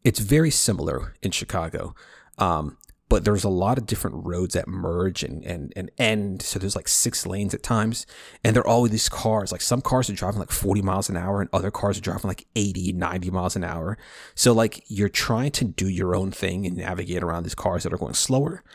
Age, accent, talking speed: 30-49, American, 225 wpm